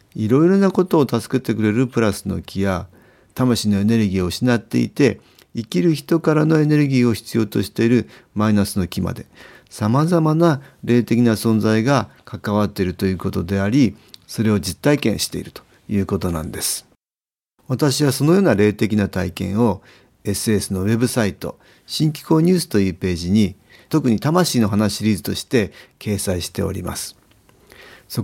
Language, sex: Japanese, male